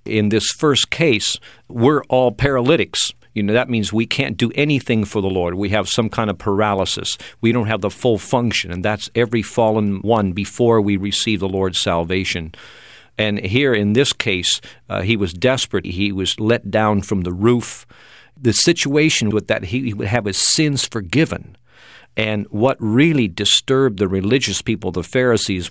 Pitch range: 95-120 Hz